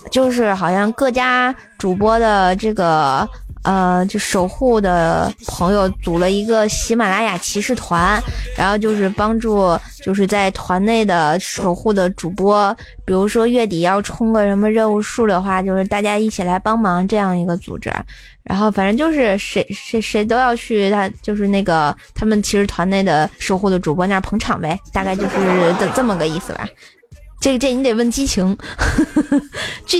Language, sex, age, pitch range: Chinese, female, 20-39, 190-225 Hz